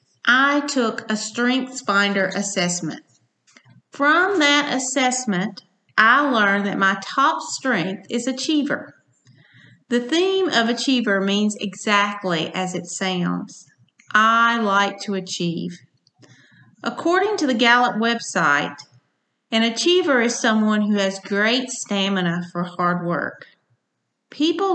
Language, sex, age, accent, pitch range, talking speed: English, female, 40-59, American, 185-245 Hz, 110 wpm